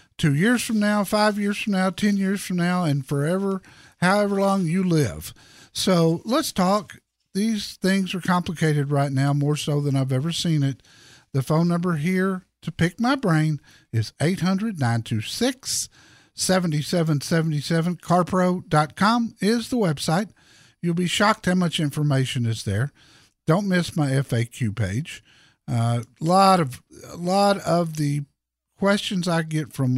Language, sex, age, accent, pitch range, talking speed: English, male, 50-69, American, 135-190 Hz, 140 wpm